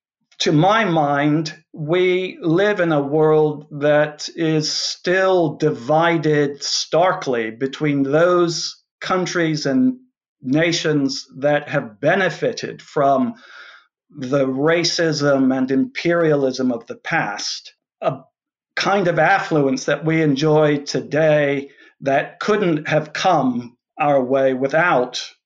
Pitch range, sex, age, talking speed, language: 145-170 Hz, male, 50-69, 105 wpm, English